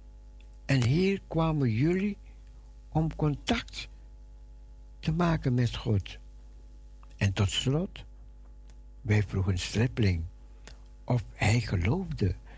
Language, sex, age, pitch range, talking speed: Dutch, male, 60-79, 85-135 Hz, 90 wpm